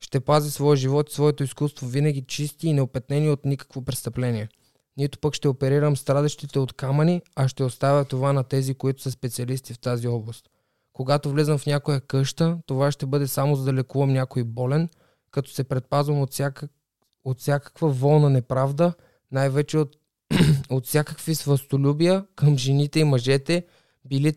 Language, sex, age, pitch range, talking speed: Bulgarian, male, 20-39, 130-145 Hz, 160 wpm